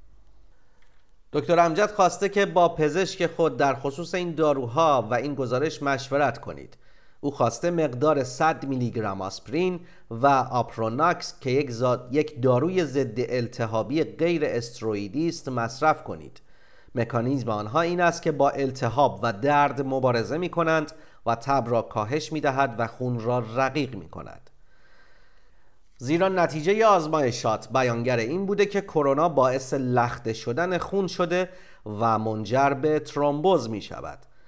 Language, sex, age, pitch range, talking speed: Persian, male, 40-59, 120-165 Hz, 140 wpm